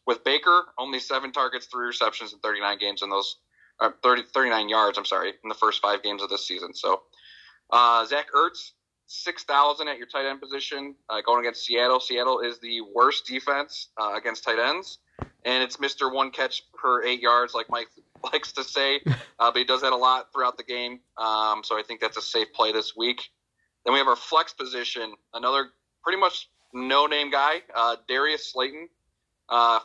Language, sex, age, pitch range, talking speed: English, male, 30-49, 115-145 Hz, 195 wpm